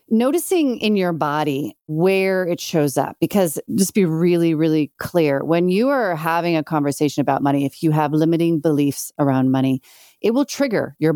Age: 40-59